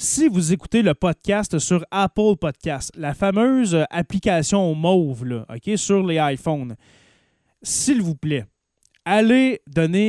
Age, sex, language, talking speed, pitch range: 20-39, male, French, 120 wpm, 150-195 Hz